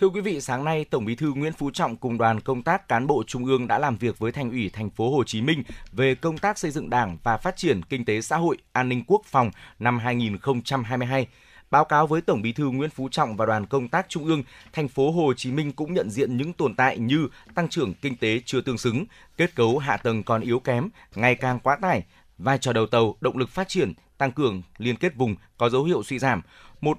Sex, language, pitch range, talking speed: male, Vietnamese, 115-150 Hz, 250 wpm